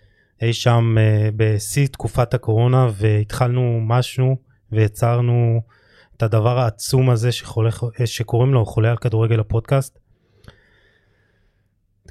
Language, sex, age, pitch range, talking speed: Hebrew, male, 20-39, 110-135 Hz, 100 wpm